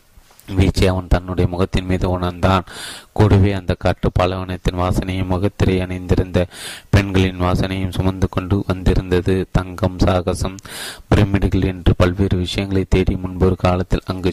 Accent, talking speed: native, 80 wpm